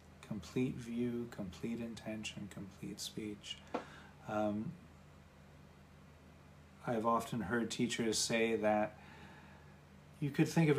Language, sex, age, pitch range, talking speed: English, male, 30-49, 75-115 Hz, 95 wpm